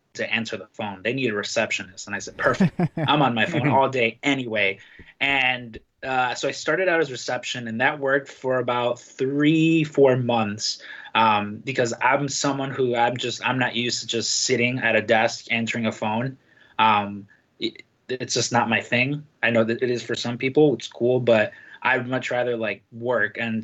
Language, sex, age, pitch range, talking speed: English, male, 20-39, 115-130 Hz, 195 wpm